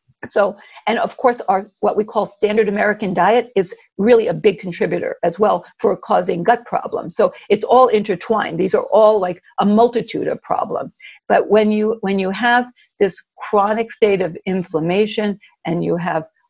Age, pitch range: 50-69, 190-230 Hz